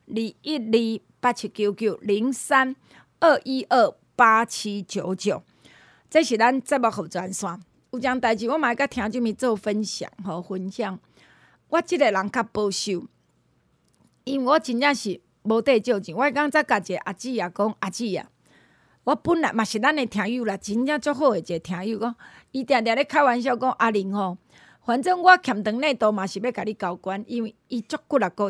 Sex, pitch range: female, 200-275 Hz